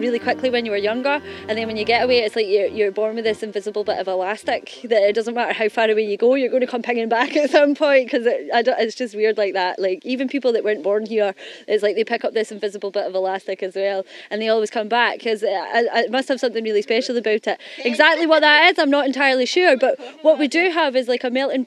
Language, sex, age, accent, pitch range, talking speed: English, female, 20-39, British, 215-265 Hz, 275 wpm